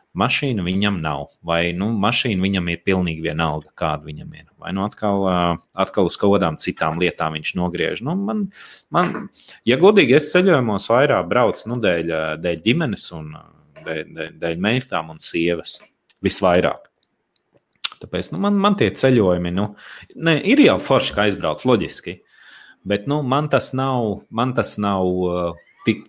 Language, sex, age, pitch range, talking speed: English, male, 30-49, 85-130 Hz, 150 wpm